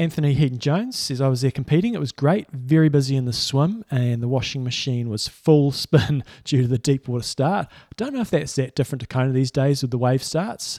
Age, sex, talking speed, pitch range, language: 20-39, male, 240 wpm, 125-140 Hz, English